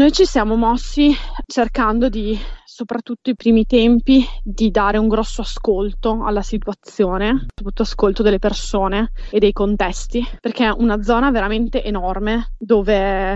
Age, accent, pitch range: 20-39, native, 200-225 Hz